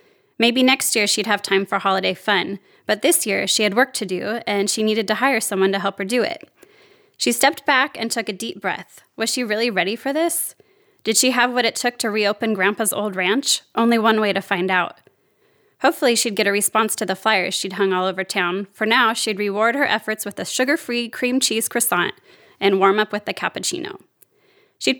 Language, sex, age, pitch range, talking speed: English, female, 20-39, 200-265 Hz, 220 wpm